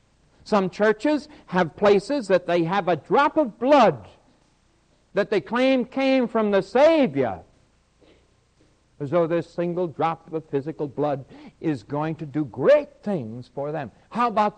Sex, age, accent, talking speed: male, 60-79, American, 150 wpm